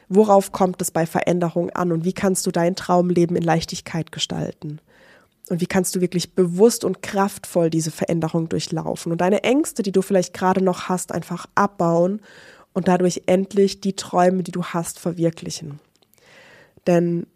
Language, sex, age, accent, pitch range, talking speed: German, female, 20-39, German, 170-195 Hz, 160 wpm